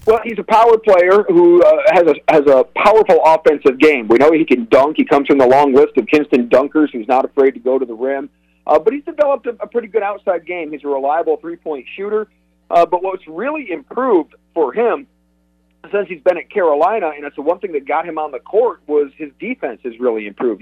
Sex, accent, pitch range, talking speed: male, American, 135-205 Hz, 235 wpm